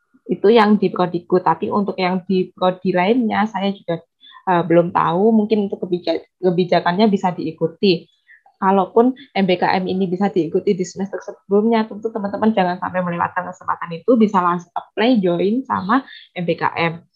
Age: 20-39